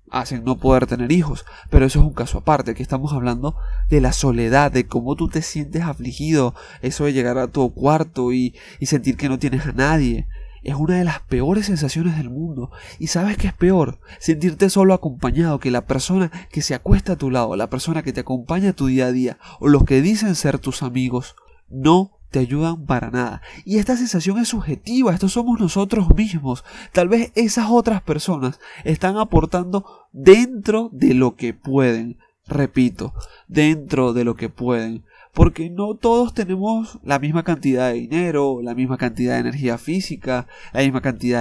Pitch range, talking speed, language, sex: 130-175 Hz, 185 wpm, Spanish, male